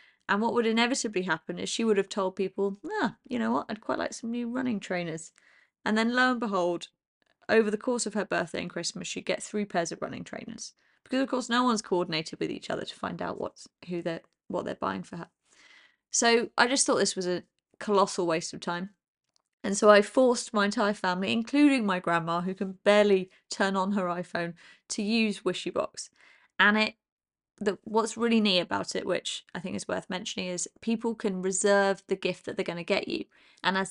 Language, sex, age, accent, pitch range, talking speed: English, female, 20-39, British, 185-225 Hz, 215 wpm